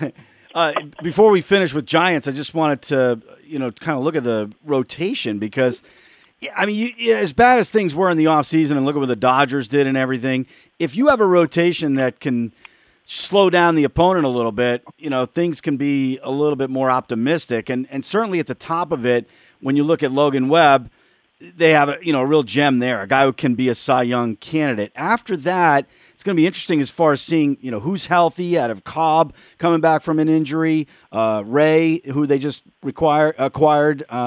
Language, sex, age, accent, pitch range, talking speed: English, male, 40-59, American, 130-165 Hz, 220 wpm